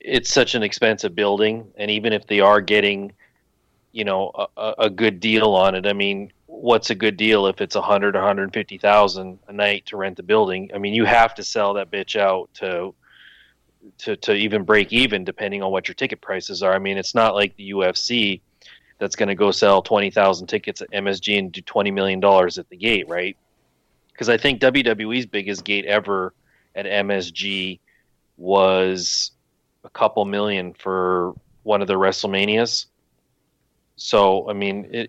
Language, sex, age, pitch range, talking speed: English, male, 30-49, 95-110 Hz, 180 wpm